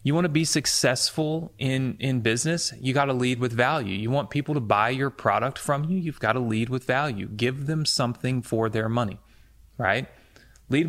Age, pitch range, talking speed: 30-49, 105-135 Hz, 185 wpm